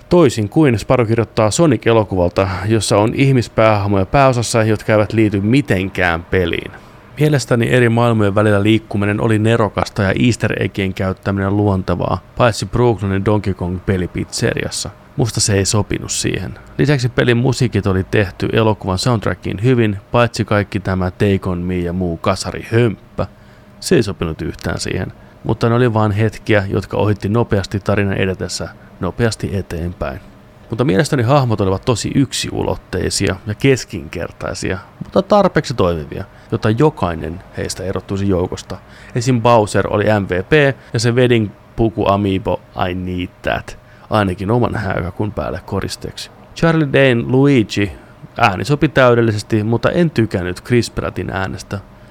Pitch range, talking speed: 95-120 Hz, 130 wpm